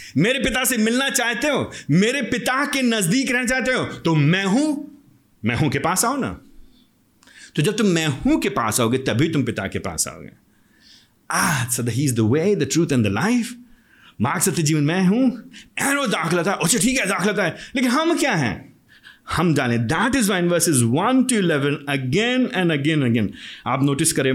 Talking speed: 160 wpm